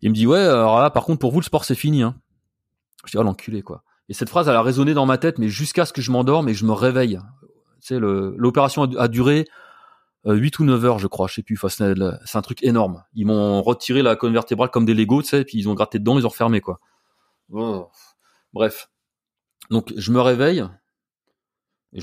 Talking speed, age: 250 wpm, 30-49